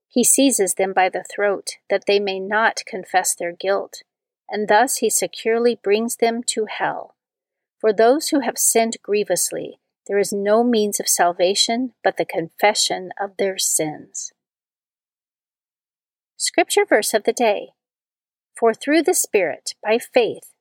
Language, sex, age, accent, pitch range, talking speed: English, female, 40-59, American, 195-265 Hz, 145 wpm